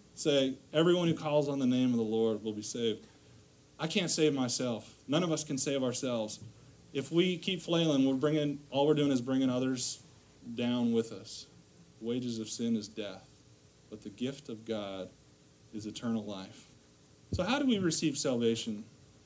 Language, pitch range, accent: English, 110-140 Hz, American